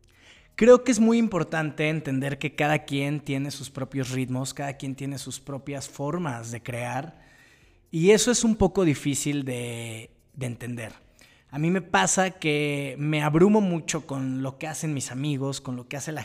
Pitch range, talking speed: 135-175 Hz, 180 wpm